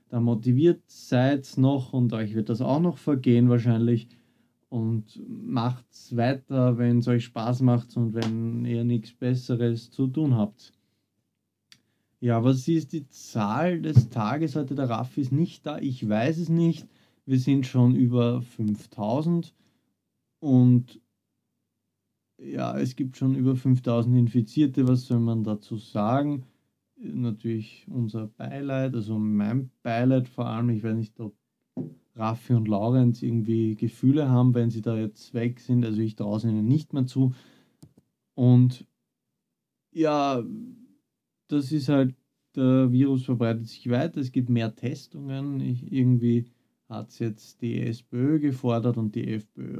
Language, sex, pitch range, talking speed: German, male, 115-135 Hz, 145 wpm